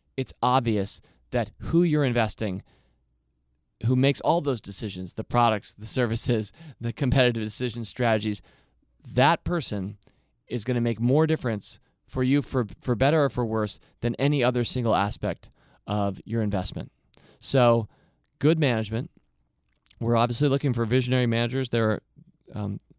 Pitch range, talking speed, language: 110-130 Hz, 145 wpm, English